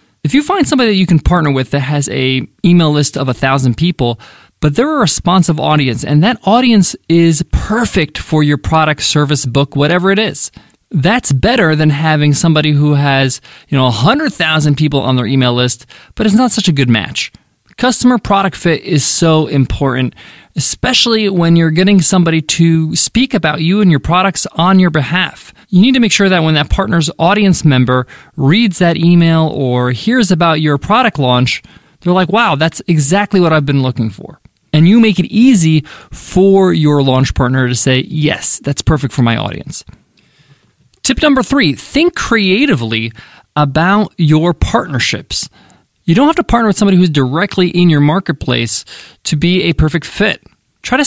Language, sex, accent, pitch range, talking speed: English, male, American, 140-195 Hz, 180 wpm